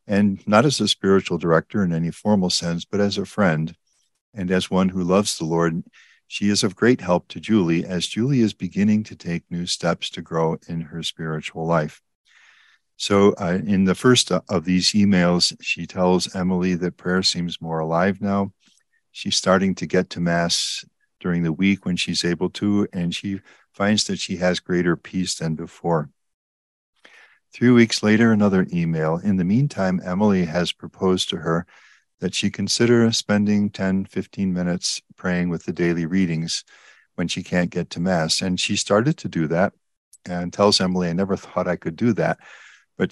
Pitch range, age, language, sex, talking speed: 85-100 Hz, 50-69, English, male, 180 wpm